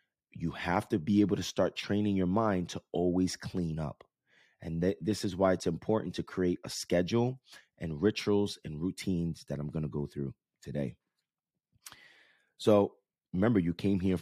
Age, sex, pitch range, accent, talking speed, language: 30-49, male, 80-100 Hz, American, 170 wpm, English